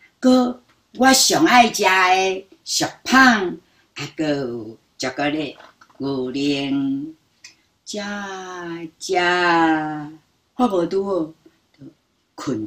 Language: Chinese